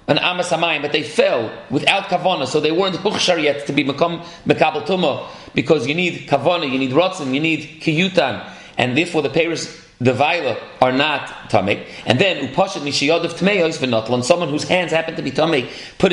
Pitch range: 145-180 Hz